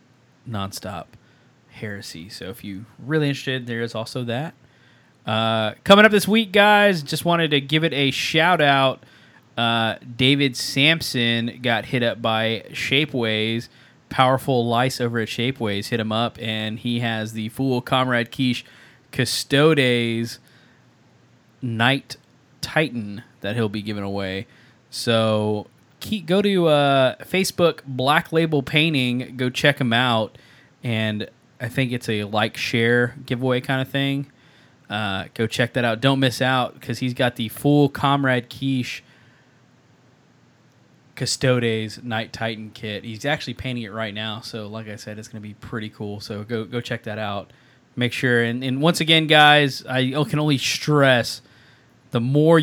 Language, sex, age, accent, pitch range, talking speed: English, male, 20-39, American, 115-140 Hz, 150 wpm